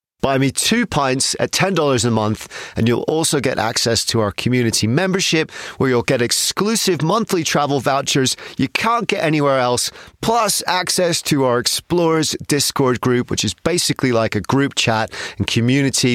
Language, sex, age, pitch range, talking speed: English, male, 30-49, 110-150 Hz, 165 wpm